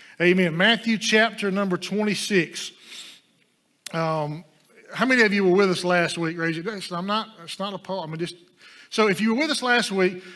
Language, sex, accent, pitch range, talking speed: English, male, American, 170-205 Hz, 180 wpm